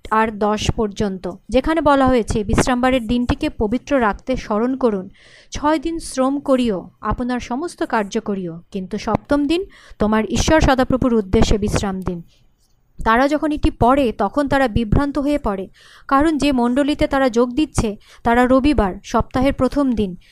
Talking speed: 145 wpm